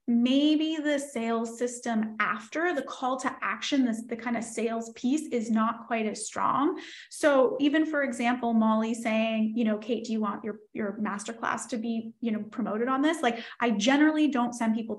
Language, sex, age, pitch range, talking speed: English, female, 20-39, 225-280 Hz, 190 wpm